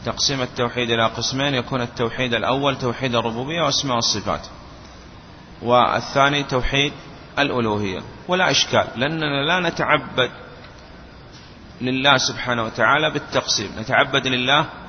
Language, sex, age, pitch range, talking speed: Arabic, male, 30-49, 115-140 Hz, 100 wpm